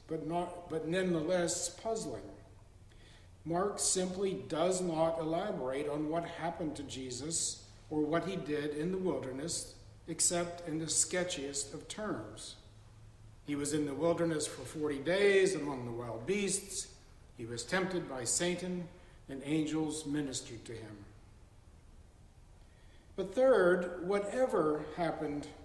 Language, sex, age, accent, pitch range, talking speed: English, male, 60-79, American, 125-180 Hz, 125 wpm